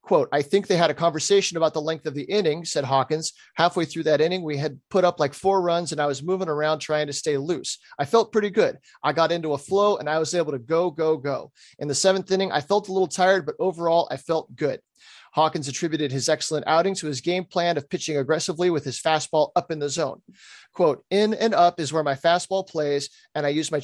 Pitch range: 150-185 Hz